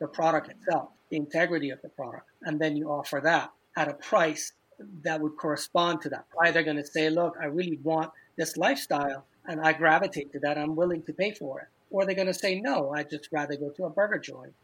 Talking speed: 230 wpm